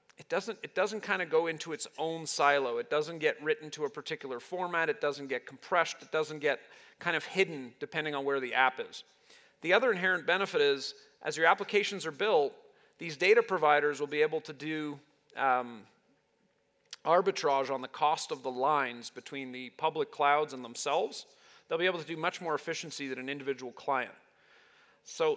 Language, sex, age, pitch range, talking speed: English, male, 40-59, 145-195 Hz, 190 wpm